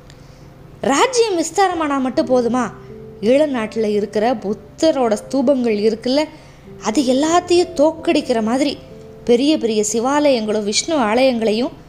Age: 20-39